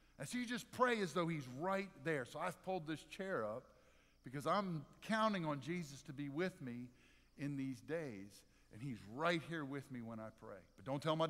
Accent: American